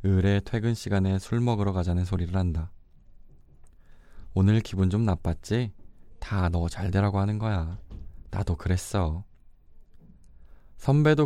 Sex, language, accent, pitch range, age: male, Korean, native, 85-105 Hz, 20-39